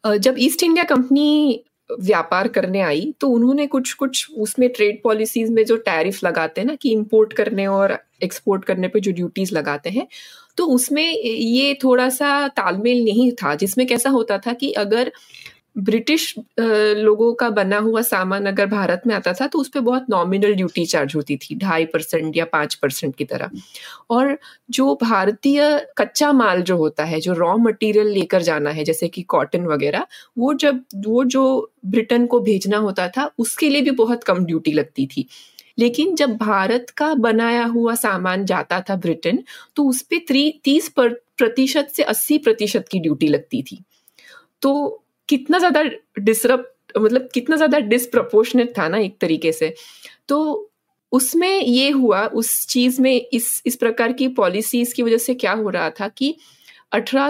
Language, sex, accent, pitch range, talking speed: Hindi, female, native, 200-270 Hz, 170 wpm